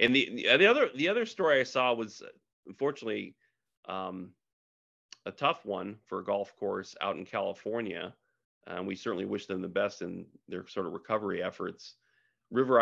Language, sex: English, male